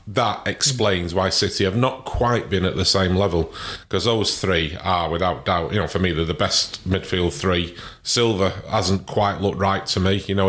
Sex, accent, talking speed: male, British, 205 wpm